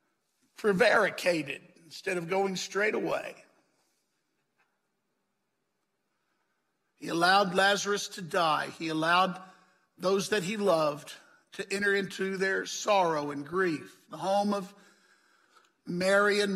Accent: American